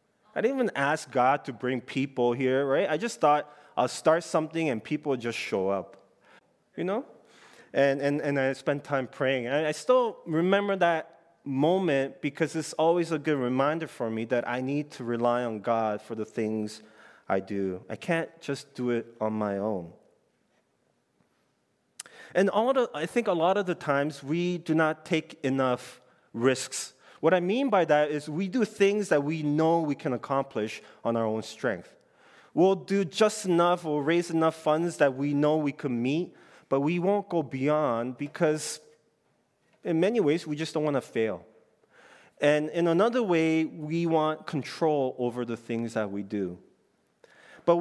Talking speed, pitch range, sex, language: 180 wpm, 125-170 Hz, male, English